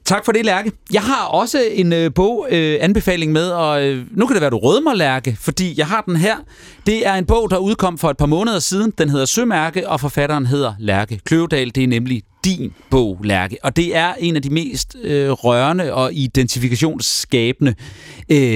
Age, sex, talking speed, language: 30-49, male, 190 wpm, Danish